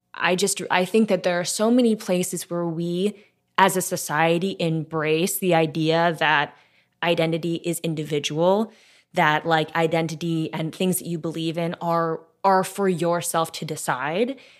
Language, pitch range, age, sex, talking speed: English, 160-185 Hz, 20-39, female, 150 wpm